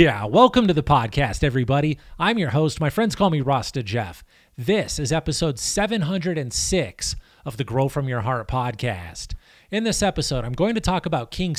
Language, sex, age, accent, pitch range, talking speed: English, male, 30-49, American, 135-175 Hz, 180 wpm